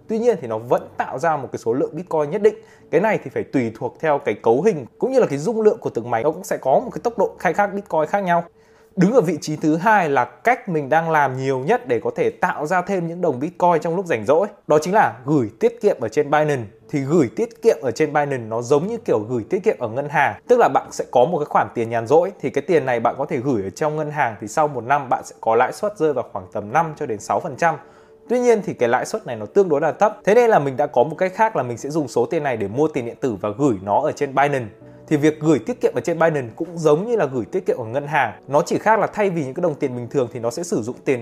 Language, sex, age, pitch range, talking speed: Vietnamese, male, 20-39, 140-200 Hz, 310 wpm